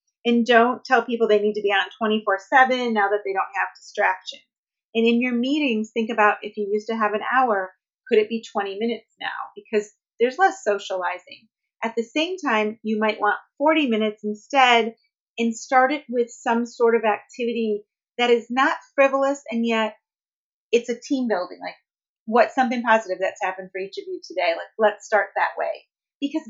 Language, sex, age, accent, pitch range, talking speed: English, female, 30-49, American, 210-250 Hz, 190 wpm